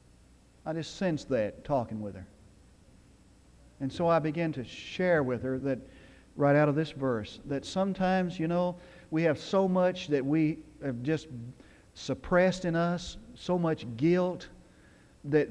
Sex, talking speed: male, 155 wpm